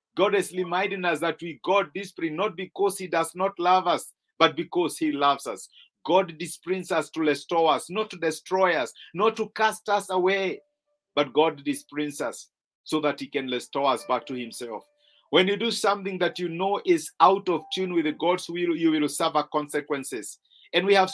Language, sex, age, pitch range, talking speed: English, male, 50-69, 165-205 Hz, 190 wpm